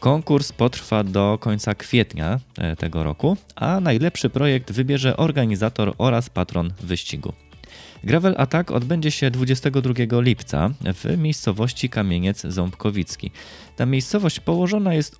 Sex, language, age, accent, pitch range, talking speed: male, Polish, 20-39, native, 95-135 Hz, 115 wpm